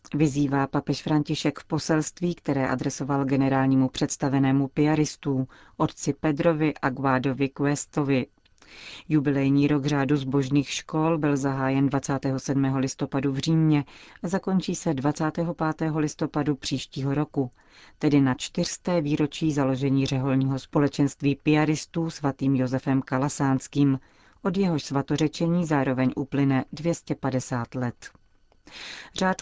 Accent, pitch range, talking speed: native, 135-155 Hz, 105 wpm